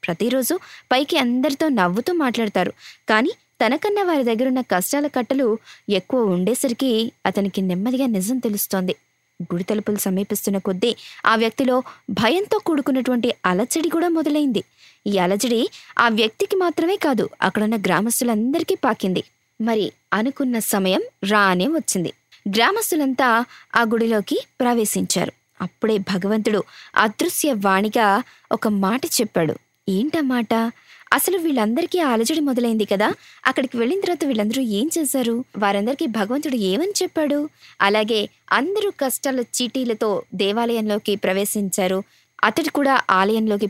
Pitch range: 200-270 Hz